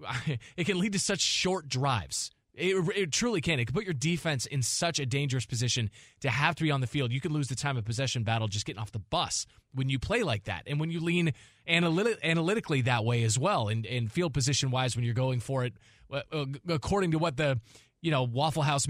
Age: 20-39